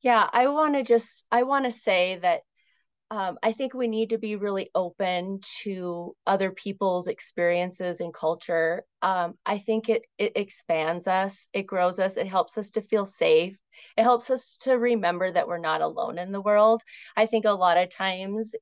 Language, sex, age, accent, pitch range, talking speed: English, female, 30-49, American, 180-230 Hz, 190 wpm